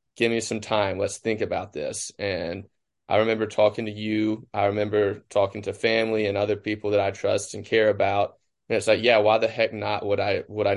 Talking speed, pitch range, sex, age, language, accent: 210 wpm, 105-120 Hz, male, 20-39, English, American